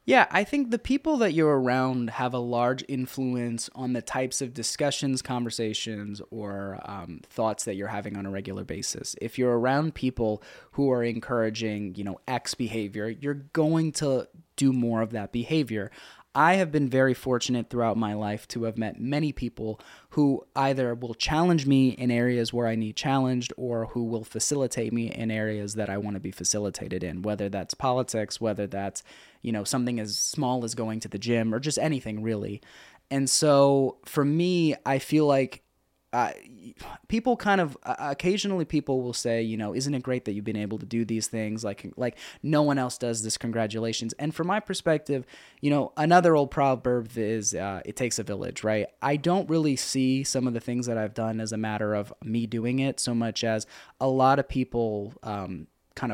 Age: 20-39